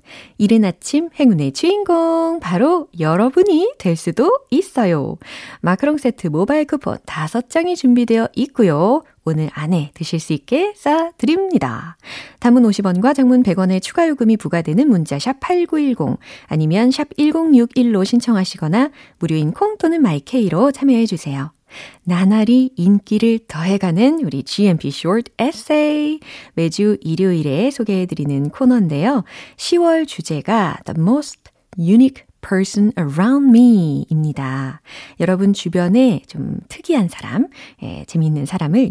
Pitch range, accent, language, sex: 165-270 Hz, native, Korean, female